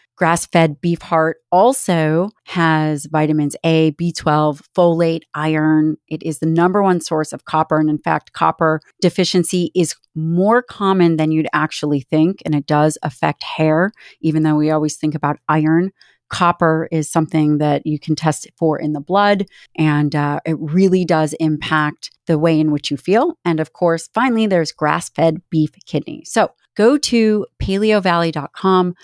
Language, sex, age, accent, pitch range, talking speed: English, female, 30-49, American, 155-190 Hz, 165 wpm